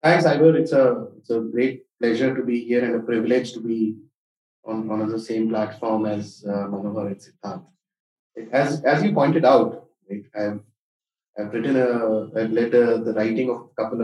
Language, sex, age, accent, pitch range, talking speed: English, male, 30-49, Indian, 110-155 Hz, 180 wpm